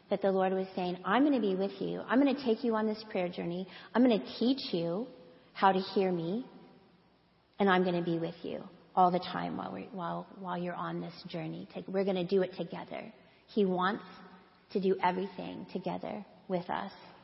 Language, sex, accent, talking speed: English, female, American, 210 wpm